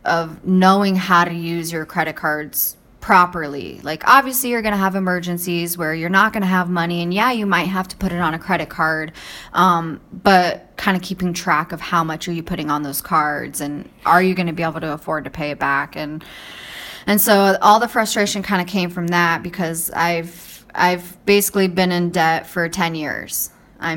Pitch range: 160-190 Hz